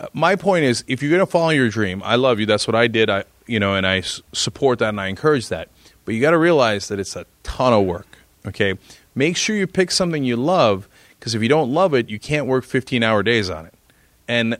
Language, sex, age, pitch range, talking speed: English, male, 30-49, 105-155 Hz, 250 wpm